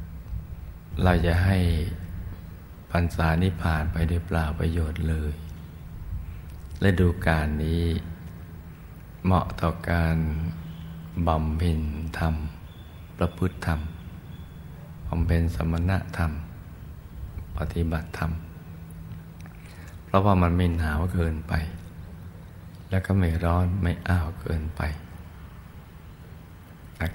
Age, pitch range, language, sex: 60-79, 80-90 Hz, Thai, male